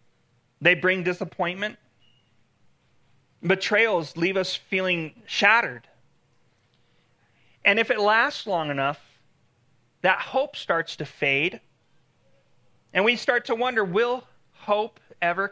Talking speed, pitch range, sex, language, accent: 105 wpm, 125-200 Hz, male, English, American